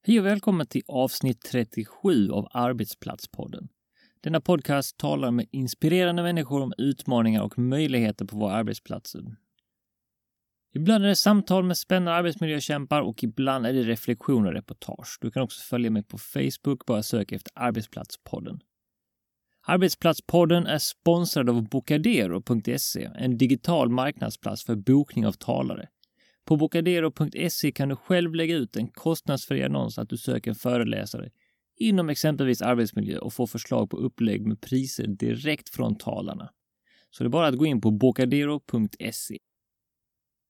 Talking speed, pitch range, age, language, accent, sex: 140 wpm, 120-165 Hz, 30-49, Swedish, native, male